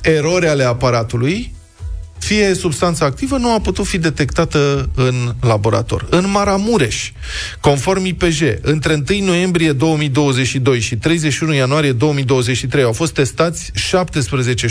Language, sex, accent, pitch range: Romanian, male, native, 115-165 Hz